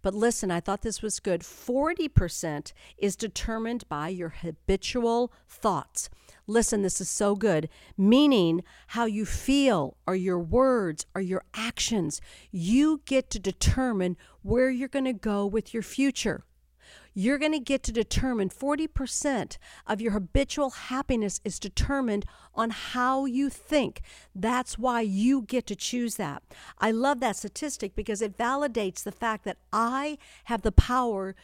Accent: American